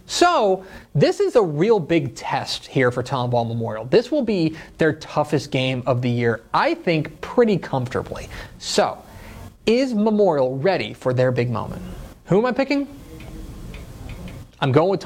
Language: English